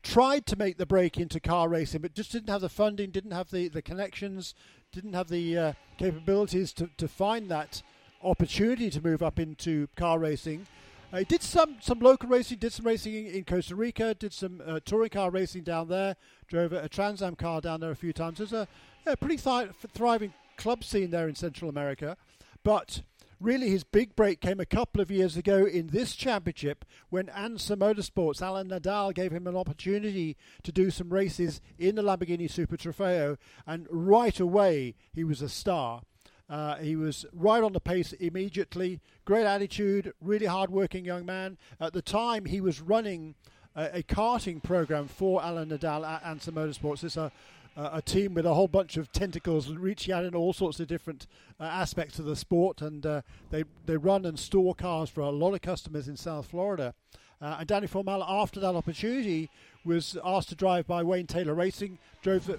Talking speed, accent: 195 wpm, British